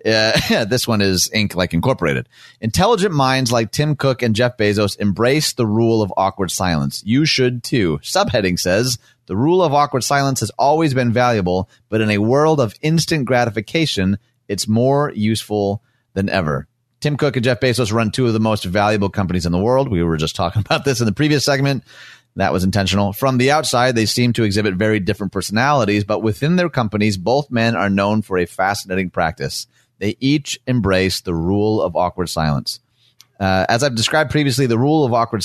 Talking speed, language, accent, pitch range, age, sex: 195 wpm, English, American, 100-130 Hz, 30-49, male